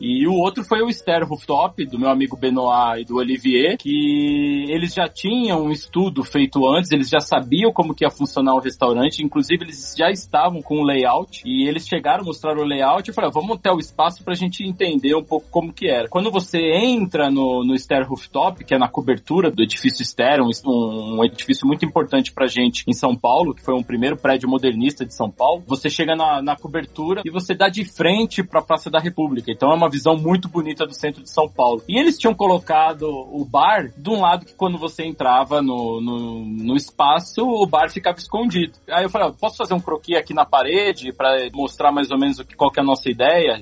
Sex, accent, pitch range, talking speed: male, Brazilian, 135-180 Hz, 225 wpm